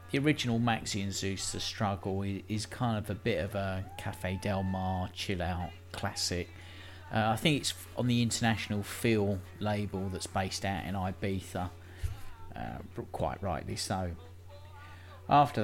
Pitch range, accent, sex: 90-115 Hz, British, male